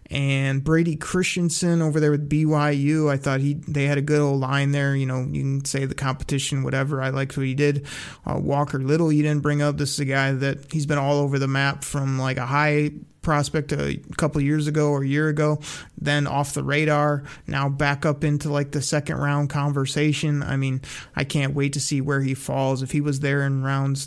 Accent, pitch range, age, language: American, 135-150 Hz, 30-49, English